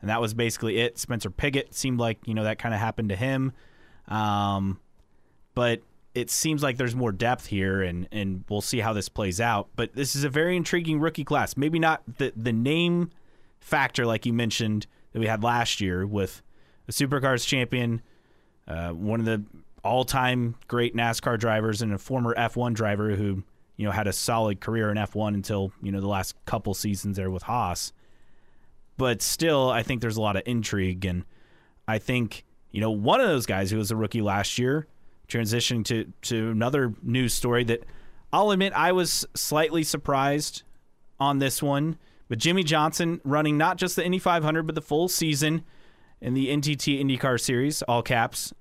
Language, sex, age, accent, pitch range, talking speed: English, male, 30-49, American, 110-135 Hz, 190 wpm